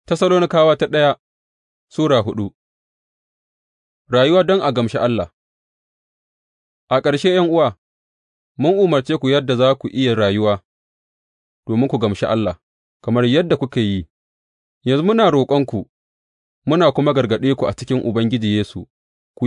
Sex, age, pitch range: male, 30-49, 90-140 Hz